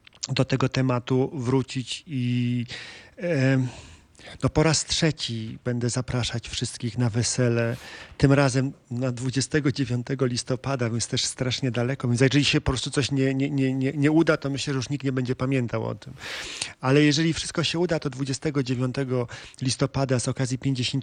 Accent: native